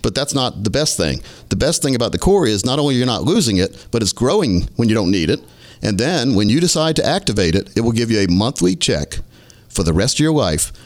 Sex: male